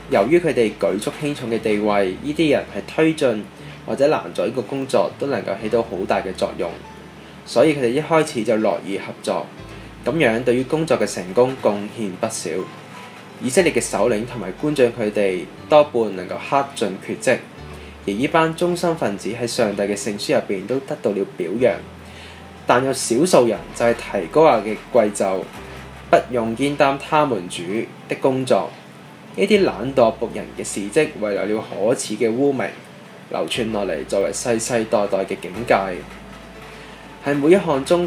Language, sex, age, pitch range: Chinese, male, 10-29, 105-145 Hz